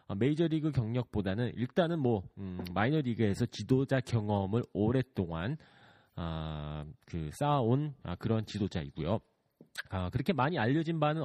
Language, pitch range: Korean, 100-145 Hz